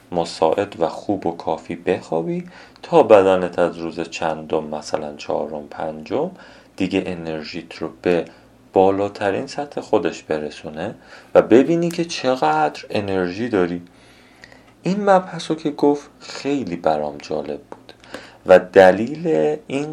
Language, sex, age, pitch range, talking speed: Persian, male, 30-49, 80-110 Hz, 115 wpm